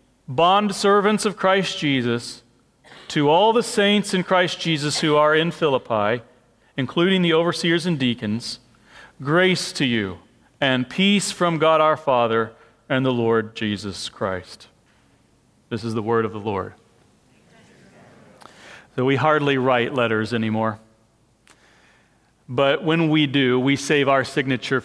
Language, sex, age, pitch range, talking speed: English, male, 40-59, 120-155 Hz, 135 wpm